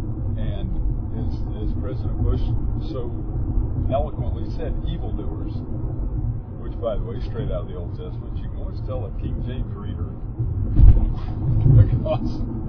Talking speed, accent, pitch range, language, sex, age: 125 wpm, American, 105-115 Hz, English, male, 50-69